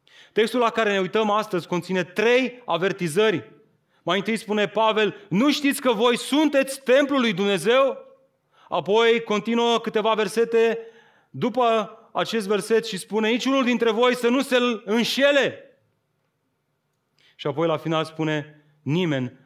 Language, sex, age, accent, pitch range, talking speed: Romanian, male, 30-49, native, 155-225 Hz, 135 wpm